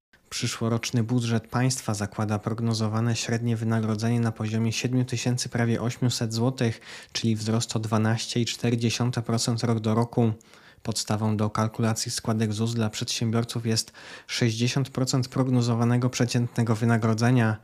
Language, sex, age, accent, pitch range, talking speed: Polish, male, 20-39, native, 115-125 Hz, 110 wpm